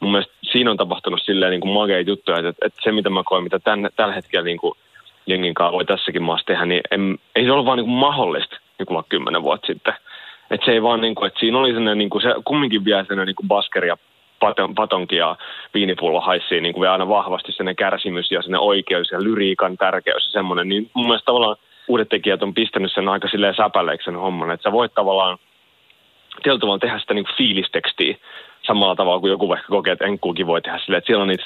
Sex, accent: male, native